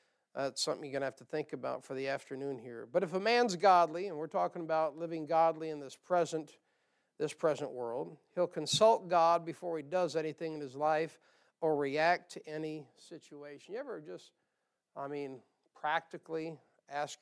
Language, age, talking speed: English, 50-69, 180 wpm